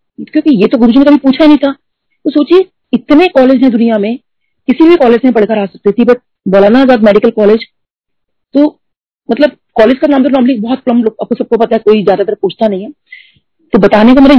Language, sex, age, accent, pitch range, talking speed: Hindi, female, 40-59, native, 195-255 Hz, 230 wpm